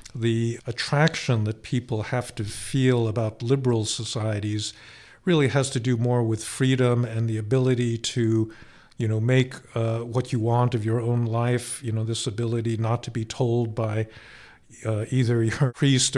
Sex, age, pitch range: male, 50-69, 110-125 Hz